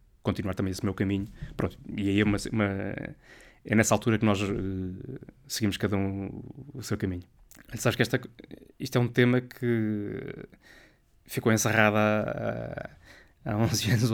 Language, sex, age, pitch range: Portuguese, male, 20-39, 105-125 Hz